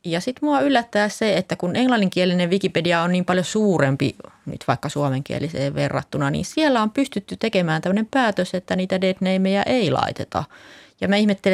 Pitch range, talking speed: 160-205 Hz, 165 wpm